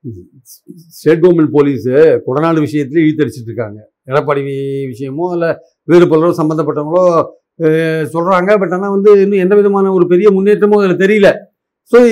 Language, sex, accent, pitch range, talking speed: Tamil, male, native, 175-225 Hz, 130 wpm